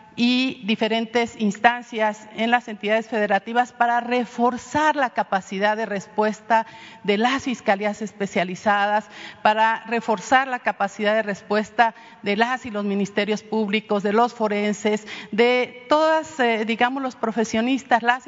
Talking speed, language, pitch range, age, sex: 125 wpm, Spanish, 210-240 Hz, 40-59, female